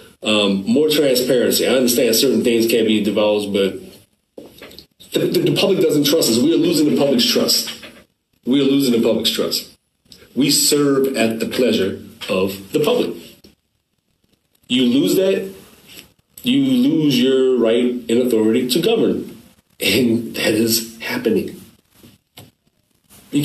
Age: 30-49